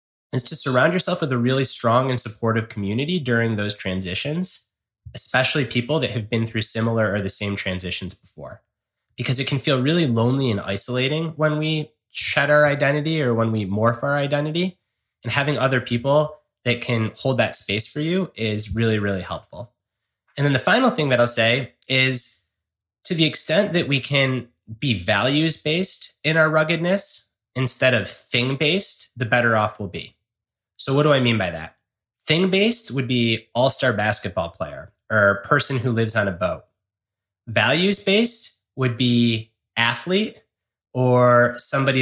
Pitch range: 110-145 Hz